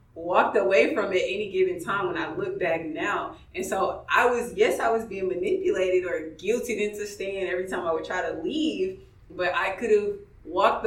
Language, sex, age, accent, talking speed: English, female, 20-39, American, 205 wpm